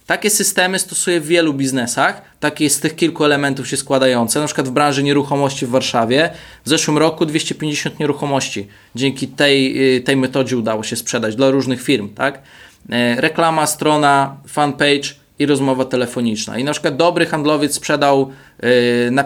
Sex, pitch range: male, 135-180 Hz